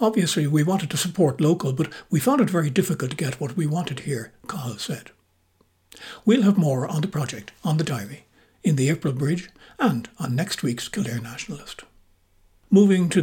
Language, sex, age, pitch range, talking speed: English, male, 60-79, 135-170 Hz, 185 wpm